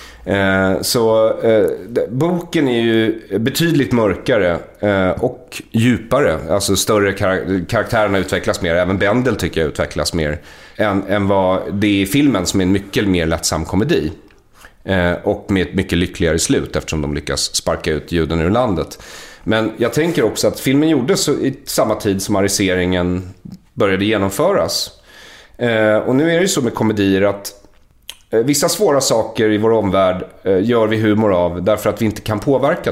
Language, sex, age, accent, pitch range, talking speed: English, male, 30-49, Swedish, 95-125 Hz, 170 wpm